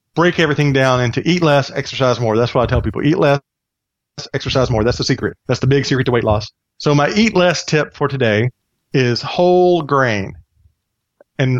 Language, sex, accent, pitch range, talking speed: English, male, American, 115-145 Hz, 195 wpm